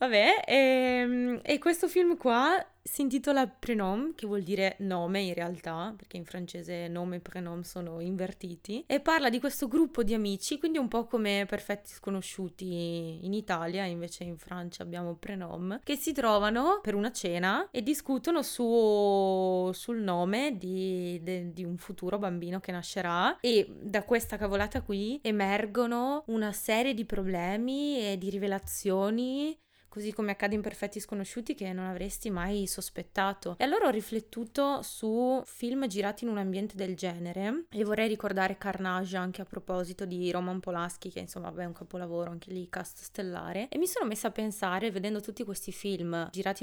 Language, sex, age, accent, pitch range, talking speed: Italian, female, 20-39, native, 185-235 Hz, 165 wpm